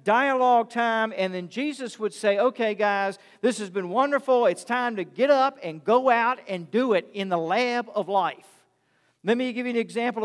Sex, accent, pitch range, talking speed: male, American, 195-245 Hz, 205 wpm